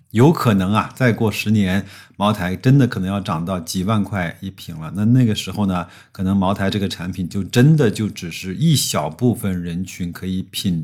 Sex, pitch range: male, 95-125 Hz